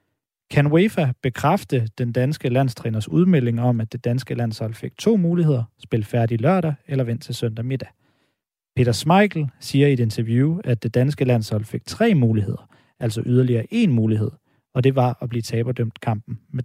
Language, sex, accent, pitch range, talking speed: Danish, male, native, 115-145 Hz, 175 wpm